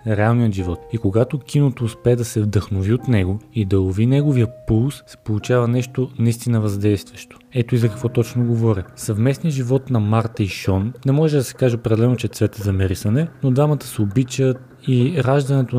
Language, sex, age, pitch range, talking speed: Bulgarian, male, 20-39, 110-130 Hz, 180 wpm